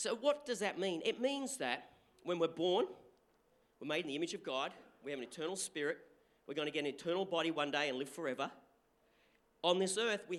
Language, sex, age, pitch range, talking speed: English, male, 40-59, 185-240 Hz, 225 wpm